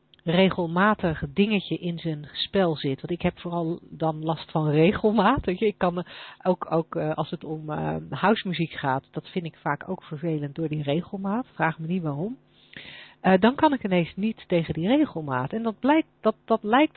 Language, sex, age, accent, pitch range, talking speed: Dutch, female, 40-59, Dutch, 165-210 Hz, 175 wpm